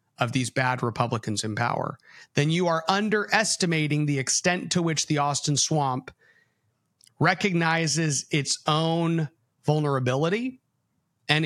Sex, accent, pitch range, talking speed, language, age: male, American, 140-200 Hz, 115 wpm, English, 30-49